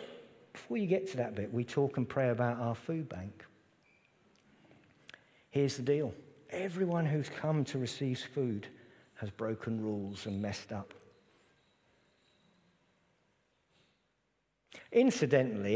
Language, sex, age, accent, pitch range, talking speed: English, male, 50-69, British, 110-180 Hz, 115 wpm